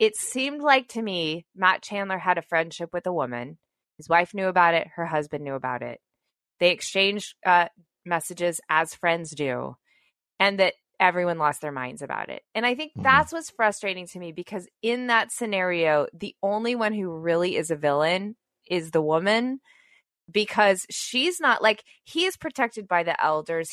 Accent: American